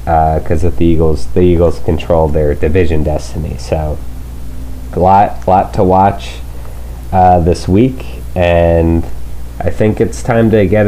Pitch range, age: 65-95 Hz, 30-49